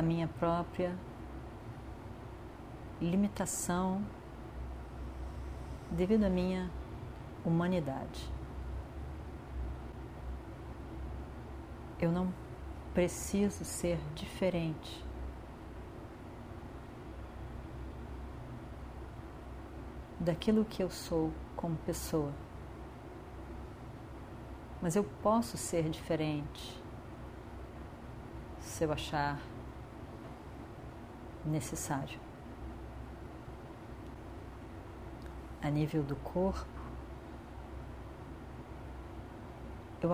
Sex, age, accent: female, 40-59, Brazilian